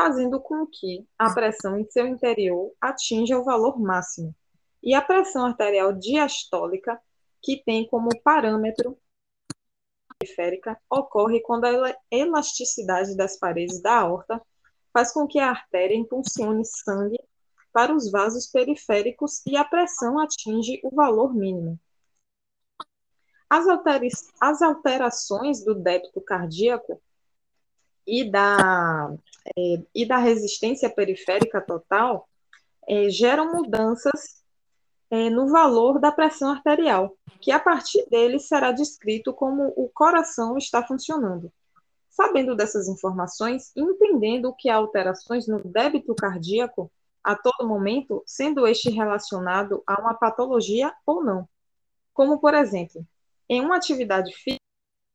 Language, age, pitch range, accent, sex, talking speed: Portuguese, 20-39, 200-275 Hz, Brazilian, female, 115 wpm